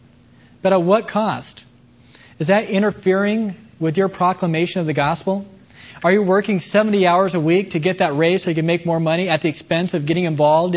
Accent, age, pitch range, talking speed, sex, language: American, 20-39, 140-180 Hz, 200 wpm, male, English